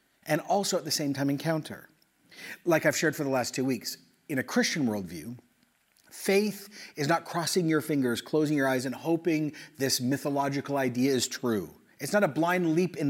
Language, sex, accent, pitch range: English, male, American, 135-175 Hz